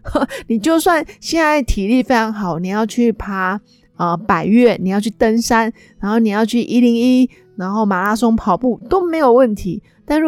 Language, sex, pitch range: Chinese, female, 190-245 Hz